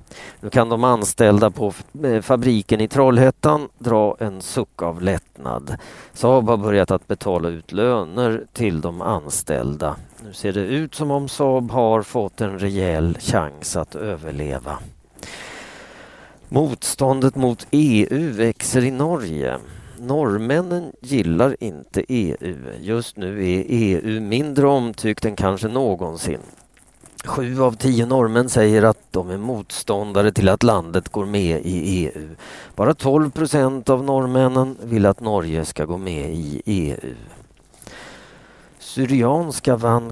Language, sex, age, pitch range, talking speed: Swedish, male, 40-59, 95-130 Hz, 130 wpm